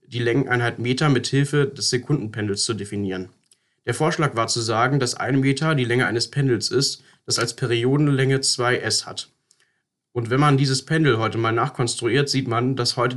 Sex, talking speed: male, 175 wpm